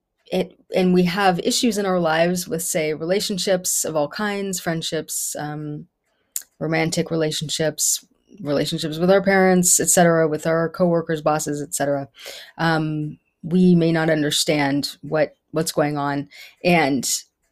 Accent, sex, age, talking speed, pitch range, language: American, female, 20-39, 130 wpm, 155-185 Hz, English